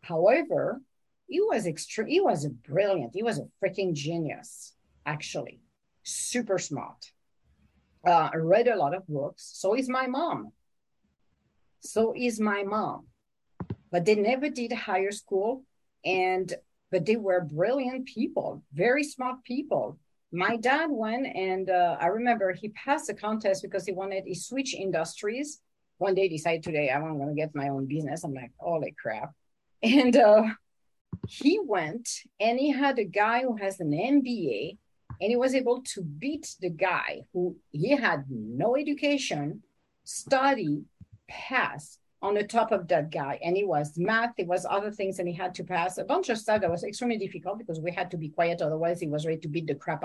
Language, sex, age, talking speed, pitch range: English, female, 50-69, 175 wpm, 170-245 Hz